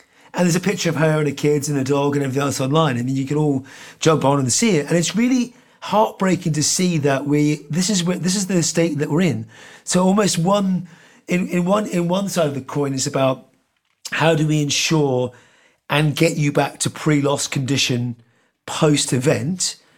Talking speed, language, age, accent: 210 wpm, English, 30-49, British